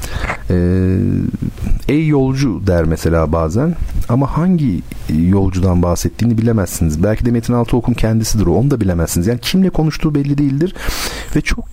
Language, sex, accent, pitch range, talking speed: Turkish, male, native, 85-130 Hz, 135 wpm